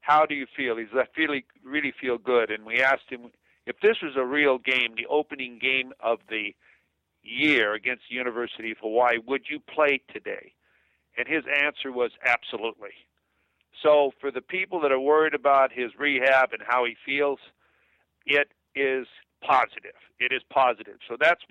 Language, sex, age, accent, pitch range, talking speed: English, male, 50-69, American, 120-150 Hz, 170 wpm